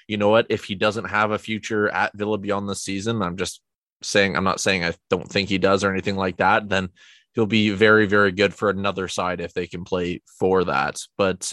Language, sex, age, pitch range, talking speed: English, male, 20-39, 95-110 Hz, 235 wpm